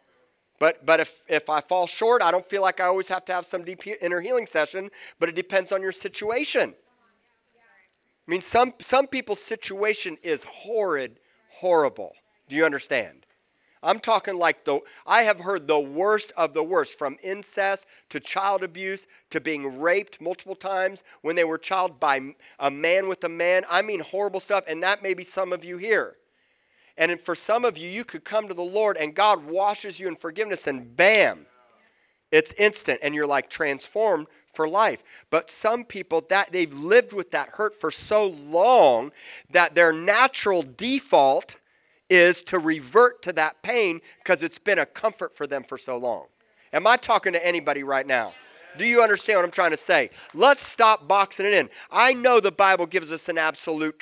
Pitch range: 165-215 Hz